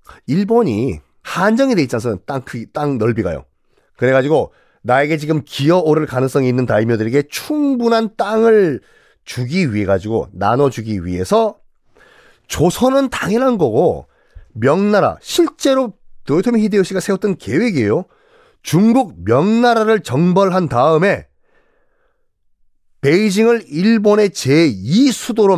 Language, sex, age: Korean, male, 40-59